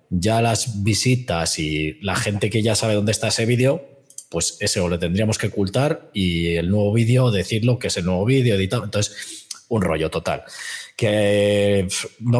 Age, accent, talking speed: 20-39, Spanish, 175 wpm